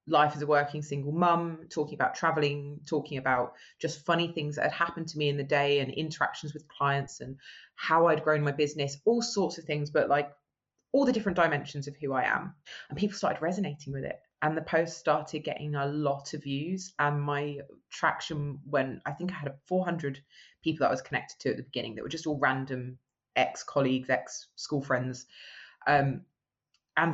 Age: 20-39